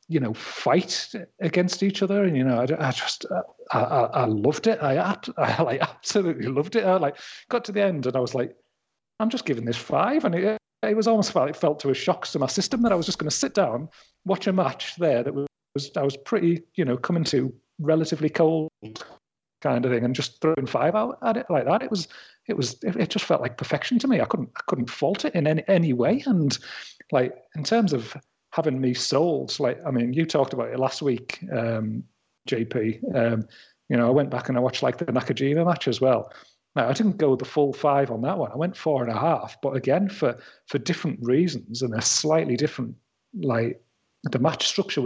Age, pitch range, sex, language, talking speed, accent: 40-59, 125-175 Hz, male, English, 235 wpm, British